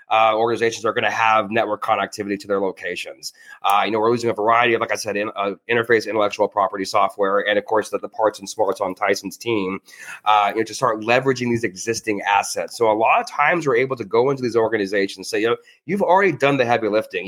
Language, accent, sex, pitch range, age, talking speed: English, American, male, 105-130 Hz, 30-49, 245 wpm